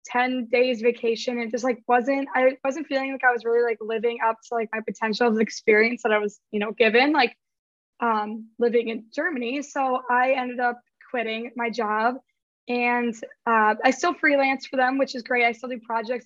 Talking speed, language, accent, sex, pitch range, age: 205 wpm, English, American, female, 235-265 Hz, 10-29